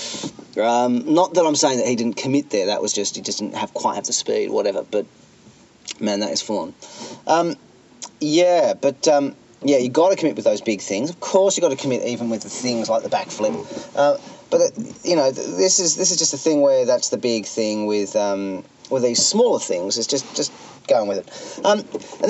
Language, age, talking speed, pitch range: English, 30-49, 230 wpm, 120-185 Hz